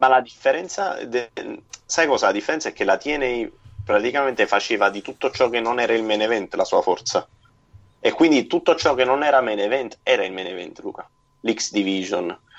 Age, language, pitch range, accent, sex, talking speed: 30-49, Italian, 100-115 Hz, native, male, 200 wpm